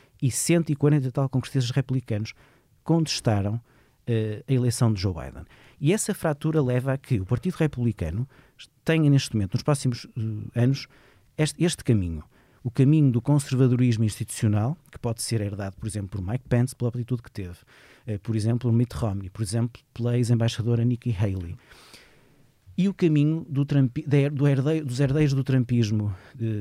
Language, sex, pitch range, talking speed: Portuguese, male, 115-140 Hz, 165 wpm